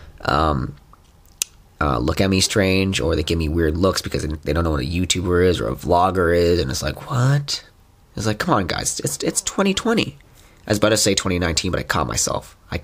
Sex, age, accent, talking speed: male, 20-39, American, 220 wpm